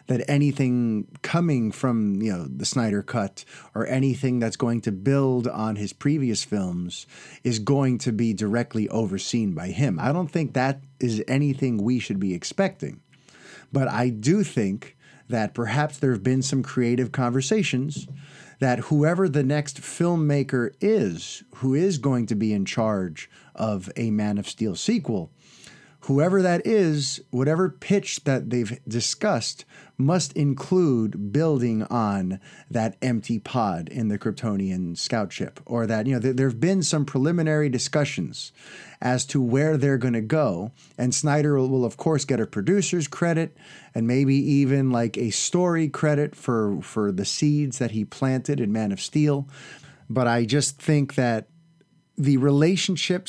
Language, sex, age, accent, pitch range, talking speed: English, male, 30-49, American, 120-150 Hz, 155 wpm